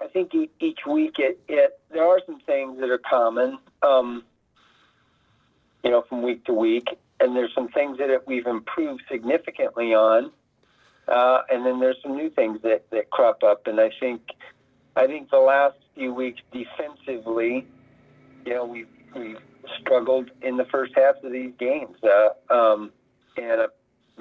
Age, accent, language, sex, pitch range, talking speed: 50-69, American, English, male, 120-135 Hz, 165 wpm